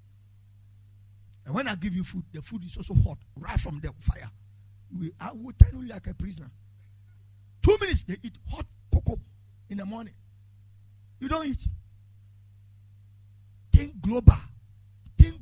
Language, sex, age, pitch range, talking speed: English, male, 50-69, 100-155 Hz, 140 wpm